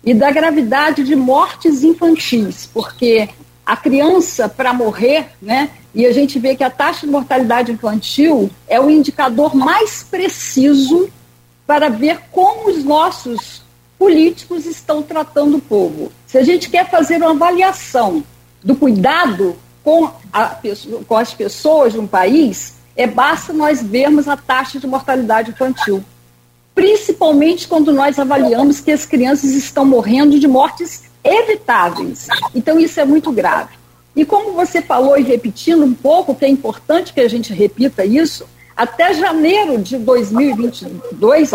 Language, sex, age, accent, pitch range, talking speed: Portuguese, female, 50-69, Brazilian, 245-320 Hz, 145 wpm